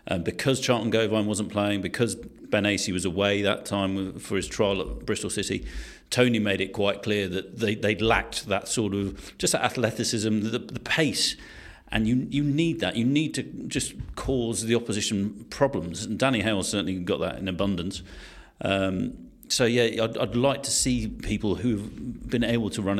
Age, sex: 40-59, male